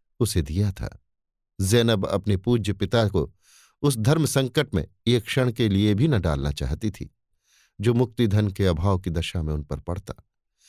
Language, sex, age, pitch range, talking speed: Hindi, male, 50-69, 95-120 Hz, 180 wpm